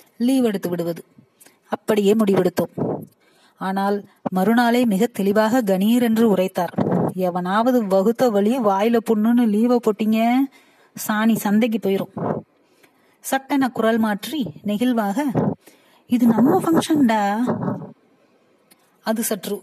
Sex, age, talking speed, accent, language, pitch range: female, 30-49, 30 wpm, native, Tamil, 200-245 Hz